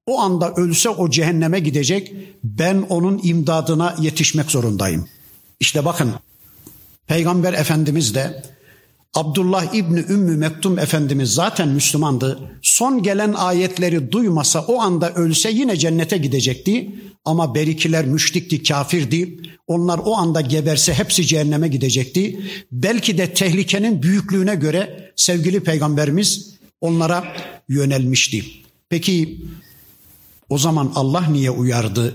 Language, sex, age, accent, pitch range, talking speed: Turkish, male, 60-79, native, 140-180 Hz, 110 wpm